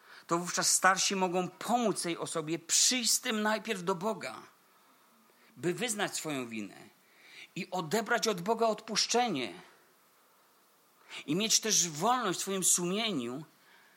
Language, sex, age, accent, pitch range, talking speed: Polish, male, 40-59, native, 135-175 Hz, 120 wpm